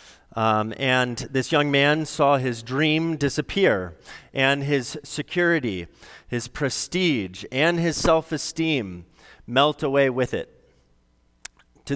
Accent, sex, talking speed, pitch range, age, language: American, male, 110 wpm, 110-140 Hz, 30-49, English